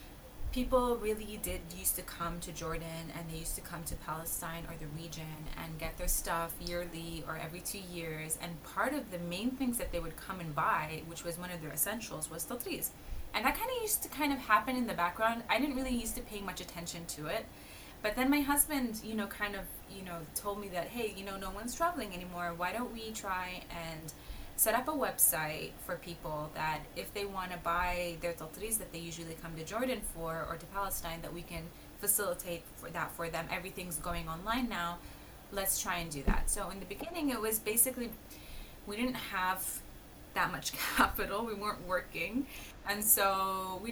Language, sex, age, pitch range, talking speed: English, female, 20-39, 165-220 Hz, 210 wpm